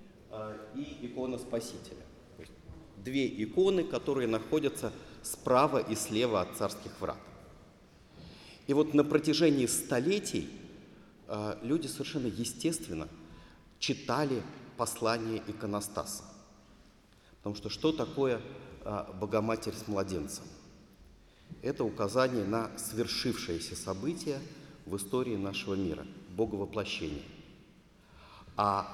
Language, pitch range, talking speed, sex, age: English, 100-135 Hz, 85 wpm, male, 40-59